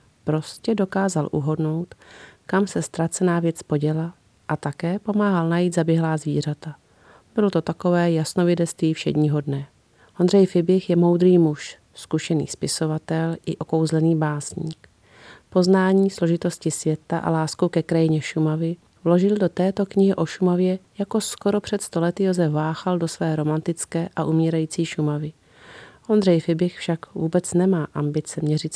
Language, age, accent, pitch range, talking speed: Czech, 40-59, native, 155-180 Hz, 130 wpm